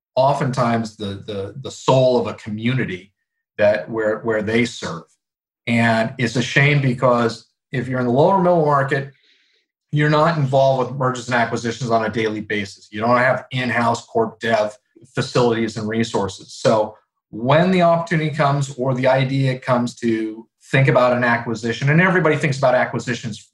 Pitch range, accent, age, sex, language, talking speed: 120-150 Hz, American, 40-59, male, English, 165 wpm